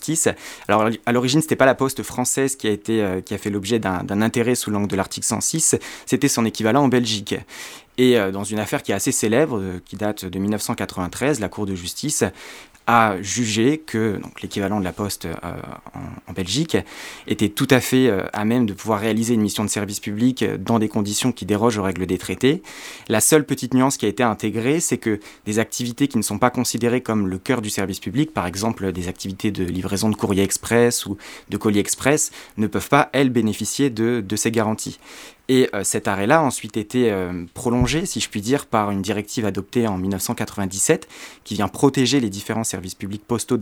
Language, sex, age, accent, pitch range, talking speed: French, male, 20-39, French, 100-125 Hz, 210 wpm